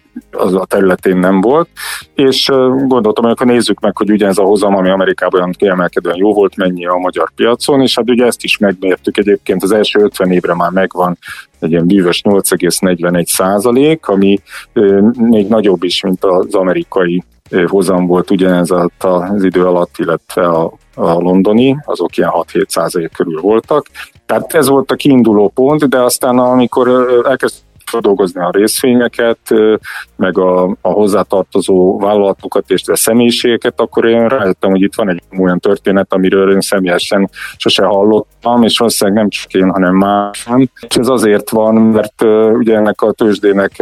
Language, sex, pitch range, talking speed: Hungarian, male, 95-115 Hz, 155 wpm